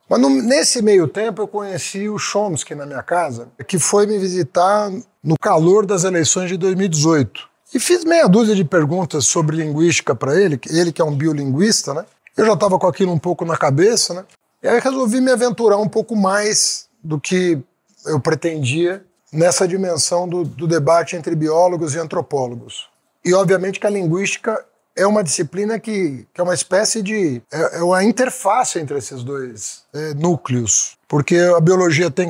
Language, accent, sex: Portuguese, Brazilian, male